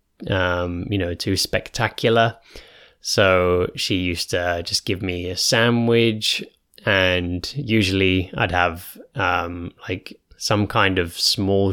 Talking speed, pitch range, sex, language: 125 wpm, 90-115 Hz, male, English